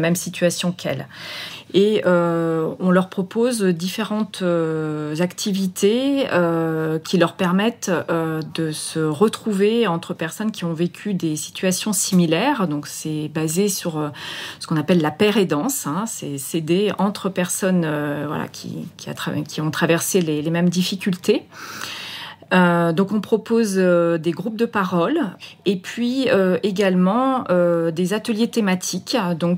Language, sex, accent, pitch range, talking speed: French, female, French, 165-200 Hz, 155 wpm